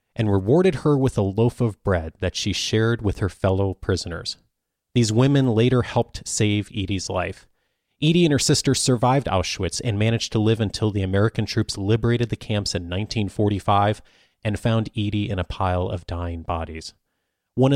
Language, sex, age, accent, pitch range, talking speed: English, male, 30-49, American, 100-125 Hz, 170 wpm